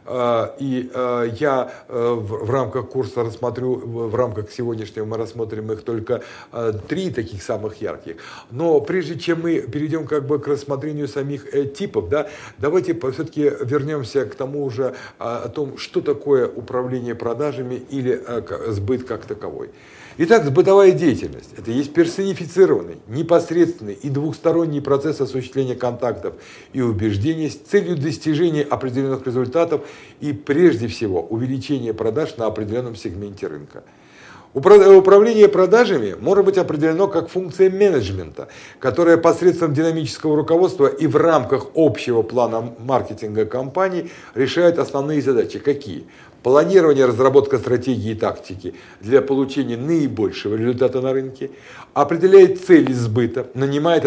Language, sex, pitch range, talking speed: Russian, male, 120-165 Hz, 125 wpm